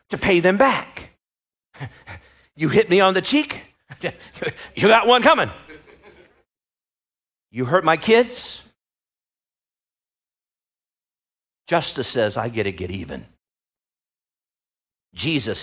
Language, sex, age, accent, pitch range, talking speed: English, male, 50-69, American, 120-180 Hz, 100 wpm